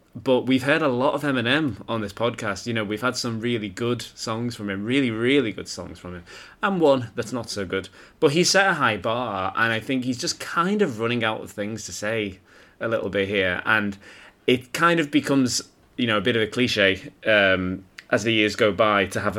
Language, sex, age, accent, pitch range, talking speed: English, male, 20-39, British, 100-125 Hz, 230 wpm